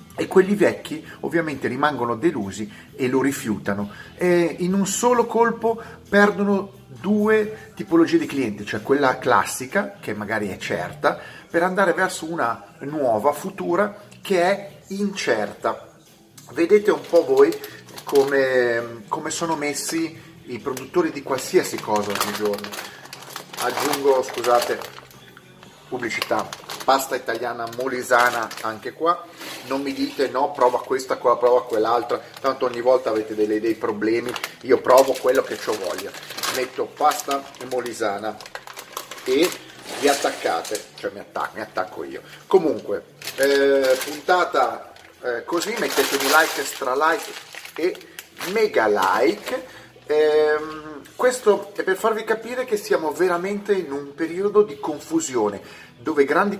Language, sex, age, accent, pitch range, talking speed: Italian, male, 30-49, native, 130-210 Hz, 125 wpm